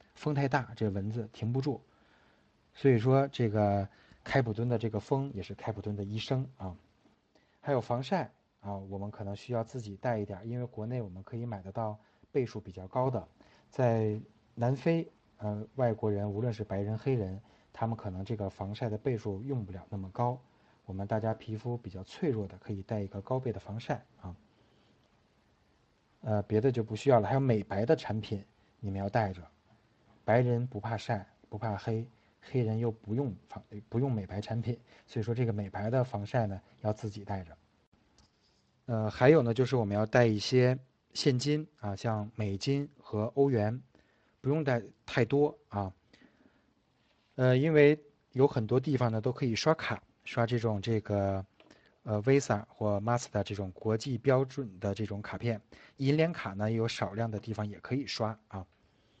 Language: English